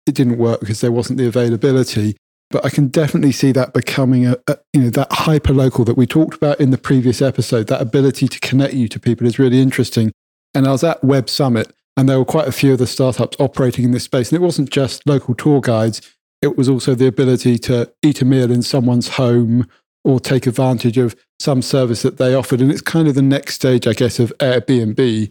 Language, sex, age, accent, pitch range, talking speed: English, male, 40-59, British, 120-135 Hz, 230 wpm